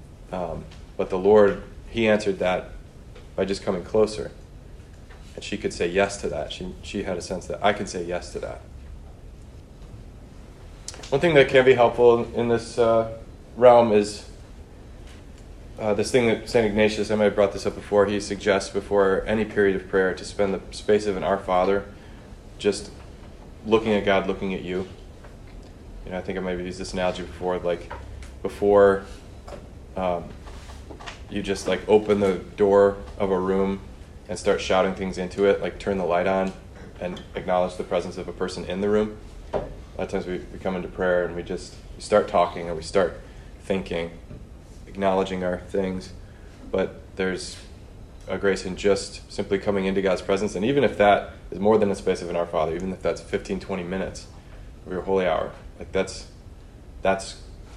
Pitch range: 90-100 Hz